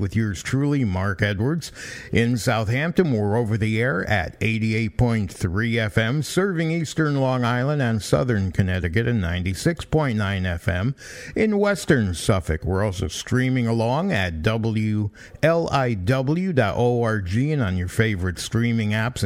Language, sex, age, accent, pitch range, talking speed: English, male, 50-69, American, 105-130 Hz, 120 wpm